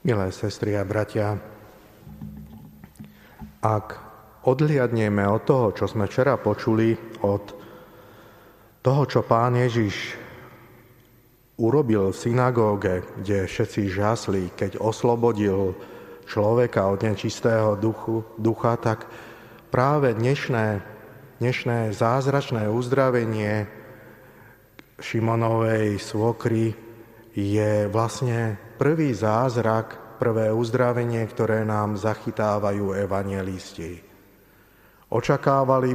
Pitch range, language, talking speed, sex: 105-120 Hz, Slovak, 80 wpm, male